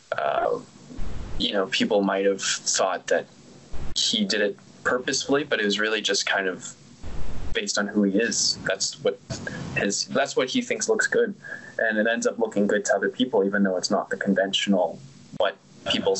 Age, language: 20-39, English